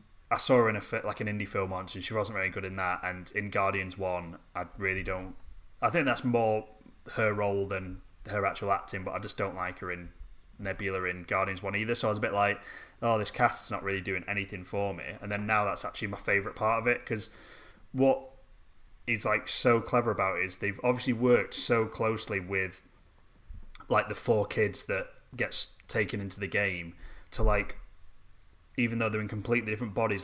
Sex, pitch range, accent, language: male, 95-115 Hz, British, English